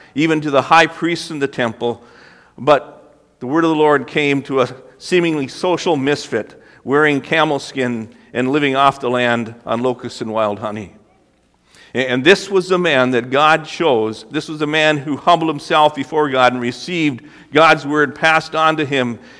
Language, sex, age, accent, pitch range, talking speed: English, male, 50-69, American, 115-150 Hz, 180 wpm